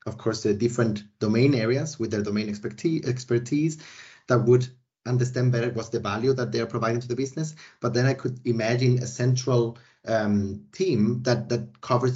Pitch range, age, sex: 110-125 Hz, 30-49, male